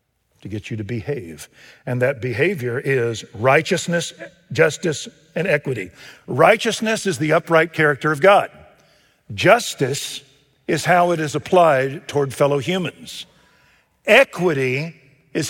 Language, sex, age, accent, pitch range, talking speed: English, male, 50-69, American, 150-200 Hz, 120 wpm